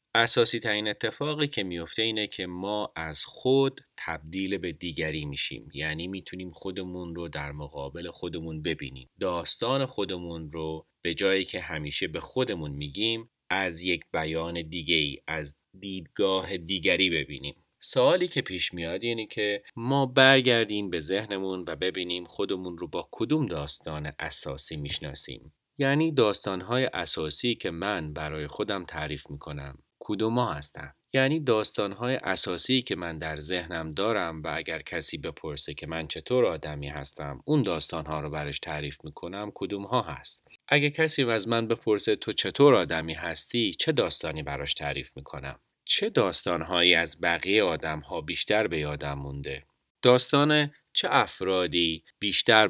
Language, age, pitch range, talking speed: Persian, 30-49, 75-105 Hz, 145 wpm